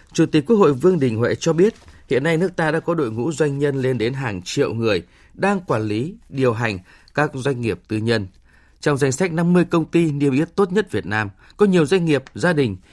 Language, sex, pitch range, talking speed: Vietnamese, male, 110-165 Hz, 240 wpm